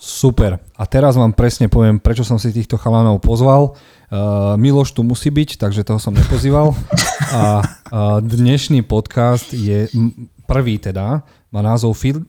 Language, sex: Slovak, male